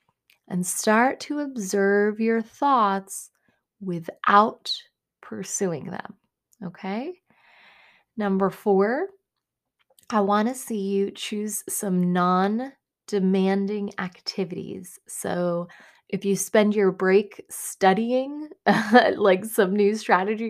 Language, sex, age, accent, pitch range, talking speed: English, female, 20-39, American, 180-220 Hz, 95 wpm